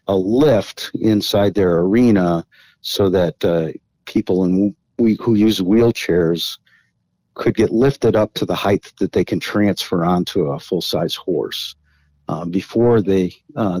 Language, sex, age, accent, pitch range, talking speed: English, male, 50-69, American, 85-100 Hz, 145 wpm